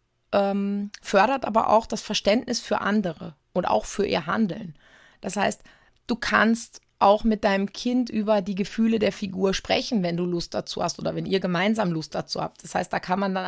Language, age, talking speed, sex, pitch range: German, 30-49, 195 wpm, female, 200-230 Hz